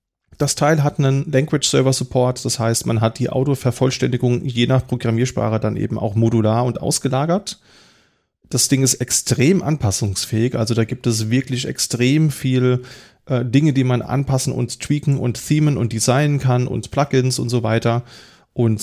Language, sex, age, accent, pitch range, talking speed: German, male, 30-49, German, 110-125 Hz, 165 wpm